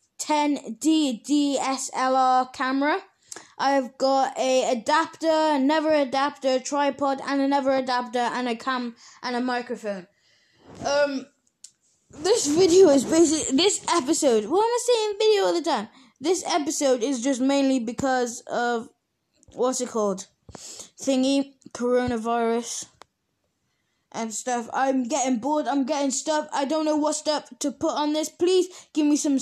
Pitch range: 250-295 Hz